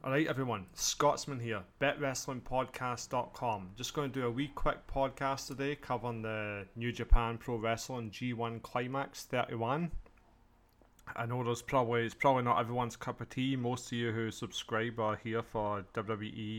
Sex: male